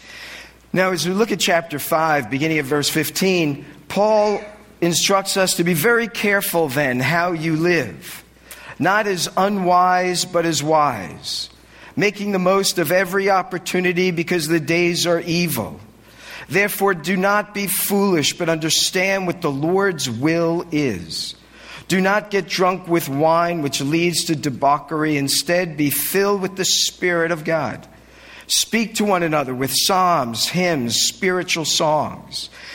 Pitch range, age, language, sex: 150-190 Hz, 50-69, English, male